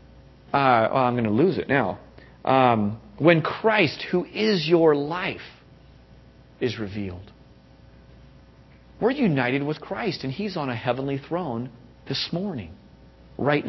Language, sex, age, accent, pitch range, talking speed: English, male, 40-59, American, 115-155 Hz, 130 wpm